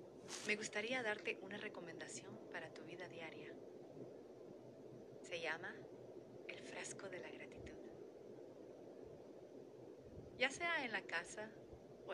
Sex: female